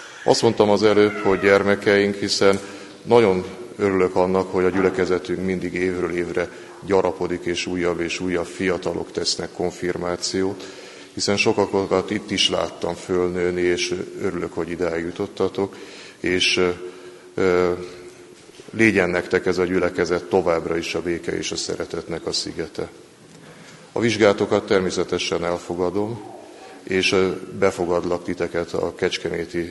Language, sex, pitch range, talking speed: Hungarian, male, 90-100 Hz, 120 wpm